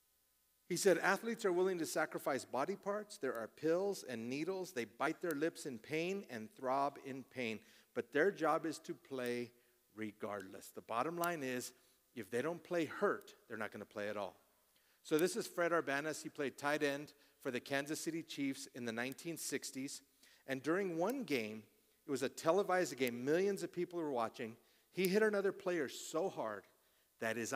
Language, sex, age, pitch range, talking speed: English, male, 40-59, 130-180 Hz, 185 wpm